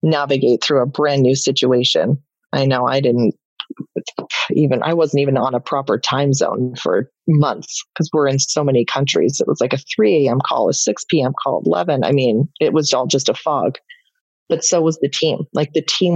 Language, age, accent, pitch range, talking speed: English, 30-49, American, 140-170 Hz, 200 wpm